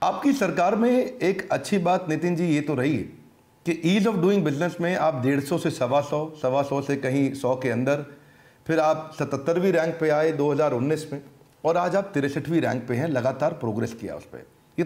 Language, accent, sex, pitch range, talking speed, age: Hindi, native, male, 135-200 Hz, 200 wpm, 50-69